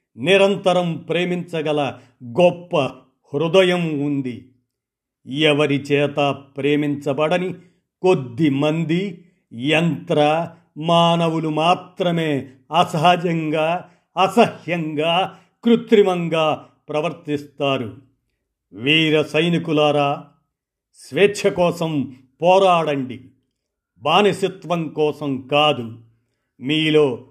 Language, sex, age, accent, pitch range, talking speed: Telugu, male, 50-69, native, 145-185 Hz, 55 wpm